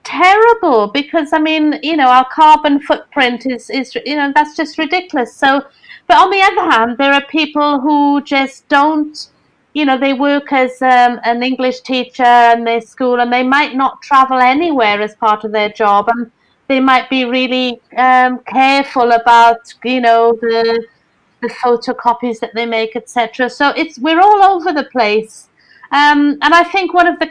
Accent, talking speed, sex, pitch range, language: British, 180 wpm, female, 235-285 Hz, English